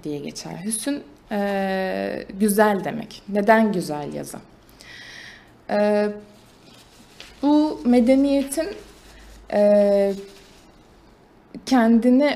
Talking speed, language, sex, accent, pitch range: 70 wpm, Turkish, female, native, 185-230 Hz